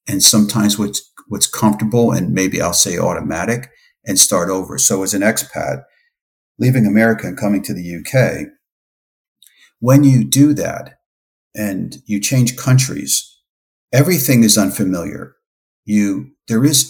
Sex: male